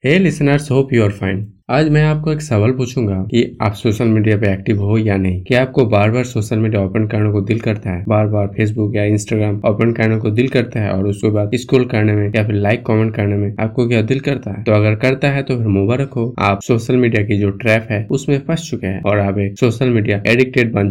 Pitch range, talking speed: 105-120 Hz, 245 wpm